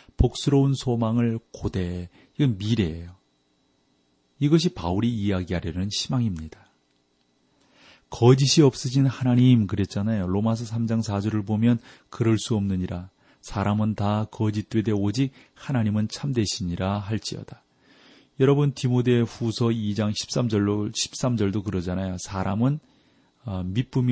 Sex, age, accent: male, 40-59, native